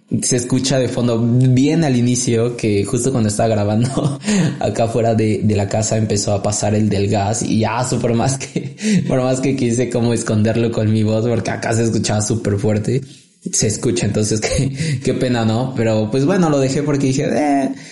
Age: 20-39